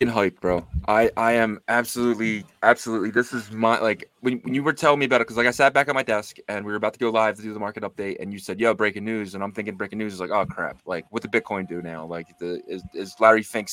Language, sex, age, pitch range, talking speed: English, male, 20-39, 100-145 Hz, 290 wpm